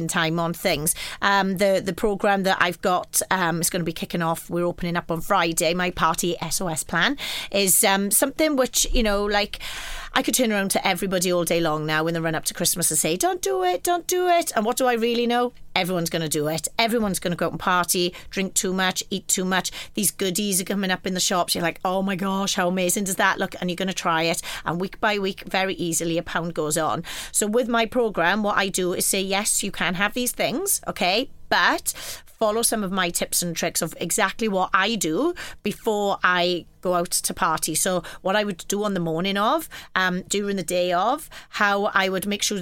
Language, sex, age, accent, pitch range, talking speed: English, female, 30-49, British, 175-205 Hz, 240 wpm